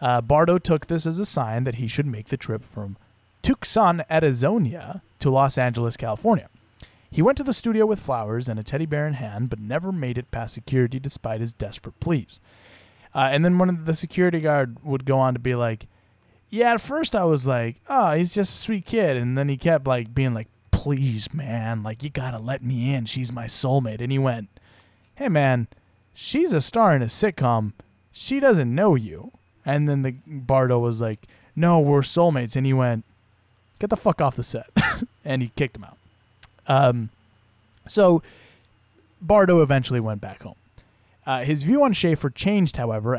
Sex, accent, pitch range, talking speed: male, American, 110-150 Hz, 195 wpm